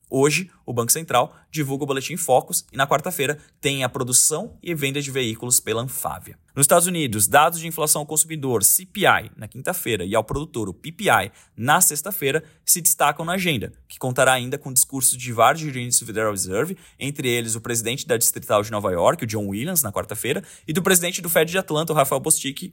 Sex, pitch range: male, 120-160 Hz